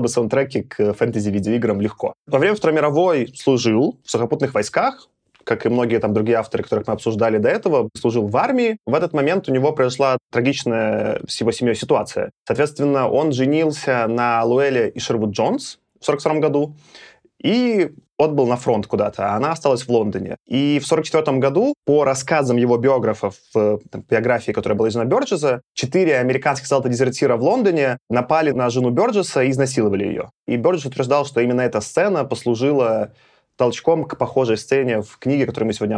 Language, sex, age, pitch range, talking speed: Russian, male, 20-39, 115-145 Hz, 175 wpm